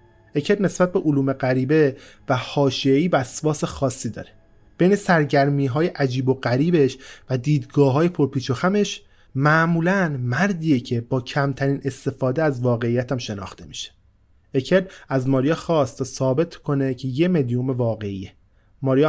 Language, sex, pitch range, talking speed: Persian, male, 125-170 Hz, 140 wpm